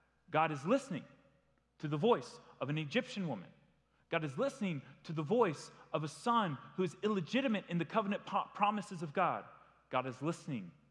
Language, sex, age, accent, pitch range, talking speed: English, male, 30-49, American, 100-150 Hz, 170 wpm